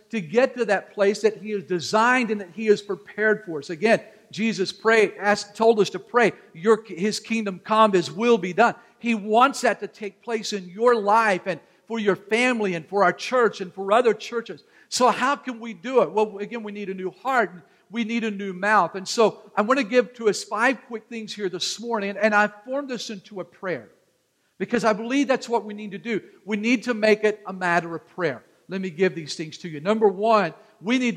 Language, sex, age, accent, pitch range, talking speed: English, male, 50-69, American, 195-235 Hz, 235 wpm